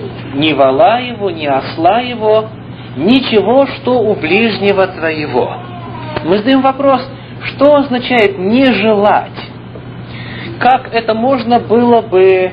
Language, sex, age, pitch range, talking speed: English, male, 40-59, 155-240 Hz, 110 wpm